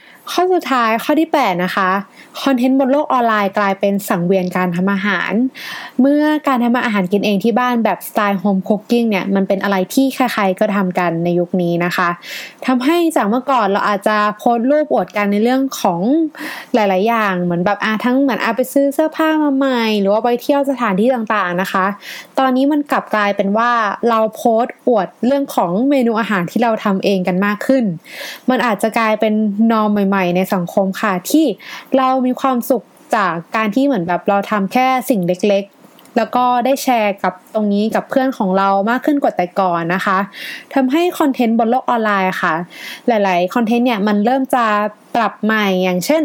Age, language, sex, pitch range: 20-39, Thai, female, 200-260 Hz